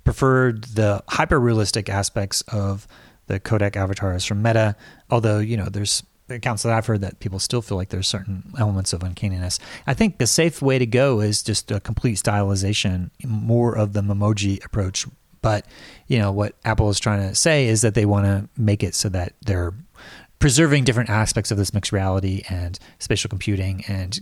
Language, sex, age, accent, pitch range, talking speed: English, male, 30-49, American, 100-115 Hz, 185 wpm